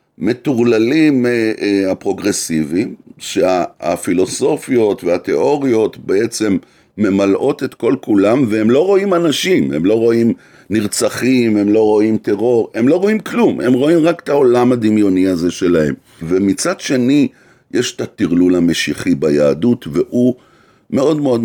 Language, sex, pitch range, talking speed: Hebrew, male, 95-120 Hz, 120 wpm